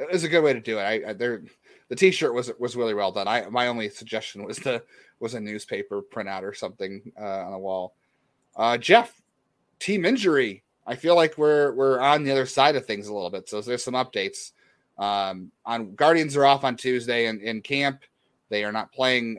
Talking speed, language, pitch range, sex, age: 215 wpm, English, 105-135 Hz, male, 30-49